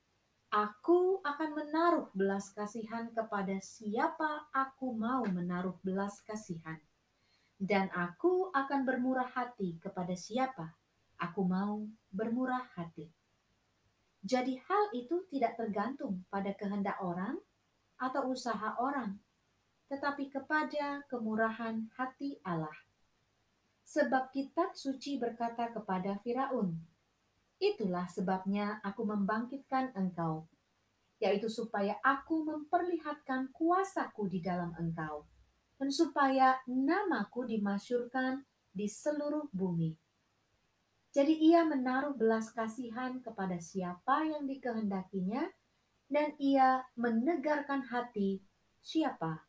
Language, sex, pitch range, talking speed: Indonesian, female, 185-270 Hz, 95 wpm